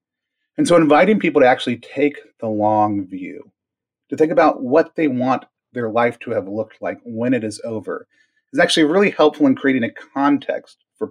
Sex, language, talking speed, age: male, English, 190 wpm, 30-49